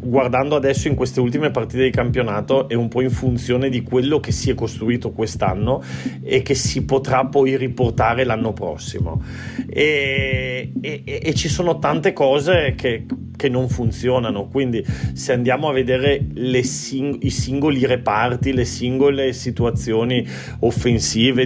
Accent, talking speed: native, 150 wpm